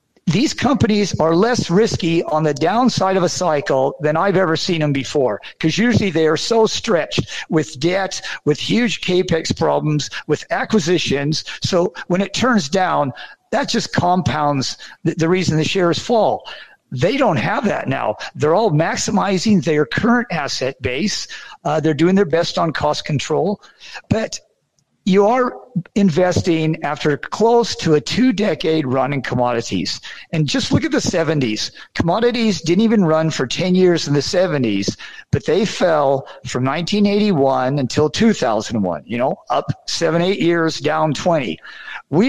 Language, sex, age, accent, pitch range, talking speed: English, male, 50-69, American, 150-200 Hz, 155 wpm